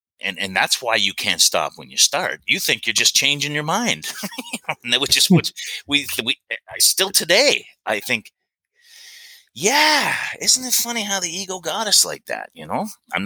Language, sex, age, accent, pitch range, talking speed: English, male, 30-49, American, 95-155 Hz, 185 wpm